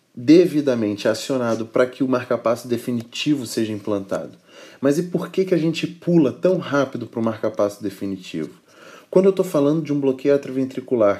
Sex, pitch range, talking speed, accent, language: male, 110-135 Hz, 165 wpm, Brazilian, Portuguese